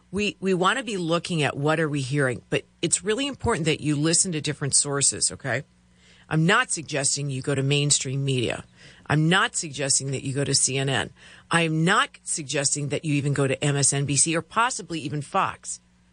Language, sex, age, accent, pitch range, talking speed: English, female, 50-69, American, 130-170 Hz, 190 wpm